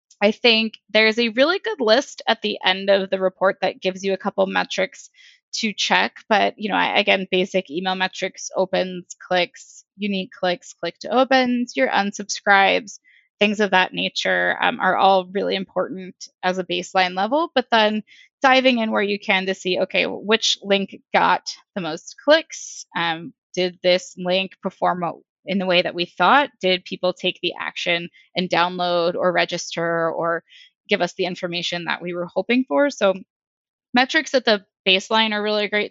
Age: 20-39